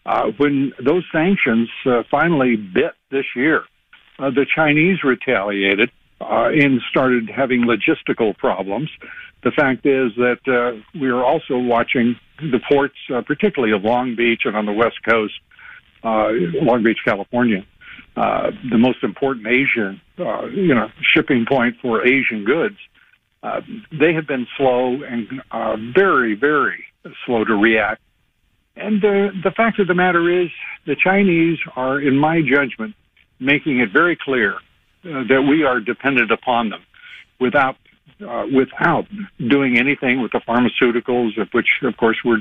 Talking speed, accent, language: 150 wpm, American, English